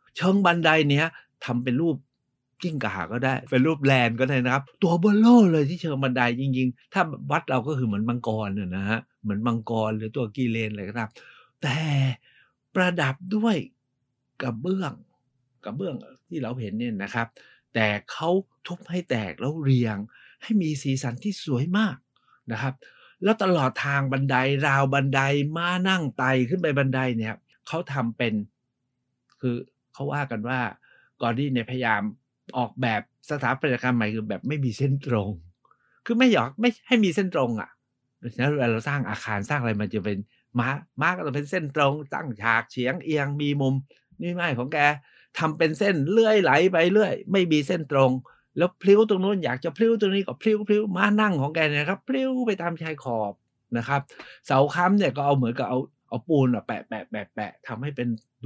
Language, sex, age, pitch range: Thai, male, 60-79, 120-165 Hz